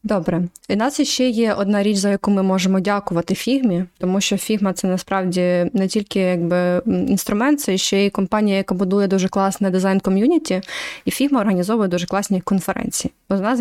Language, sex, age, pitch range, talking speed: Ukrainian, female, 20-39, 185-230 Hz, 175 wpm